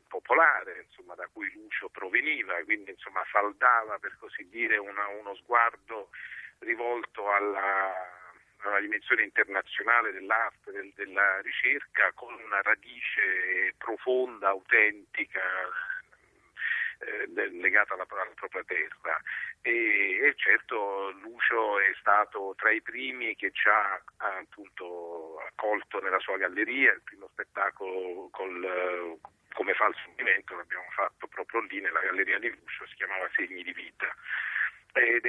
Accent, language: native, Italian